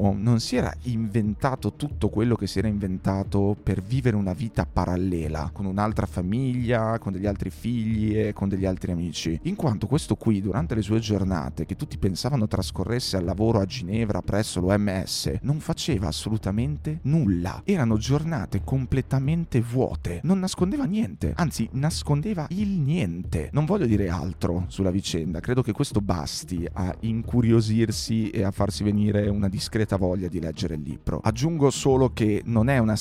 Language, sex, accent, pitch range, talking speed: Italian, male, native, 95-115 Hz, 160 wpm